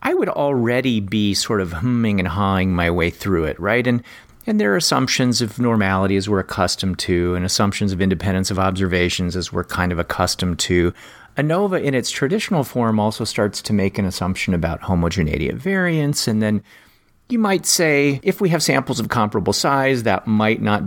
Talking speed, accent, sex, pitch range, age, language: 195 wpm, American, male, 95-125 Hz, 40-59, English